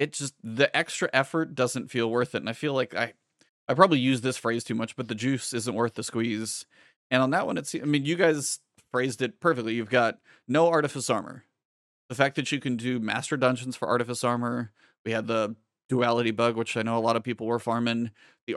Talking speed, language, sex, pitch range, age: 230 wpm, English, male, 115-145 Hz, 30-49